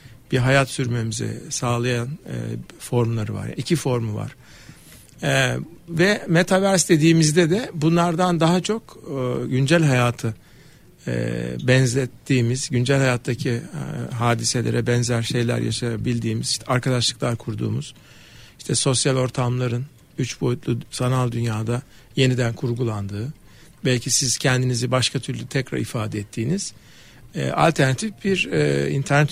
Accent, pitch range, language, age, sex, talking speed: native, 120-150 Hz, Turkish, 50-69, male, 110 wpm